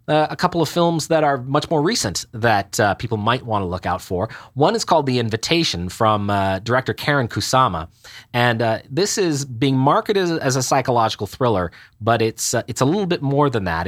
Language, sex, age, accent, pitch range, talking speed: English, male, 30-49, American, 110-140 Hz, 210 wpm